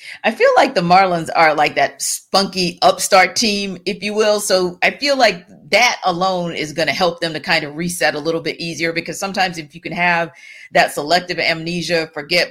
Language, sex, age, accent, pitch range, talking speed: English, female, 40-59, American, 160-235 Hz, 205 wpm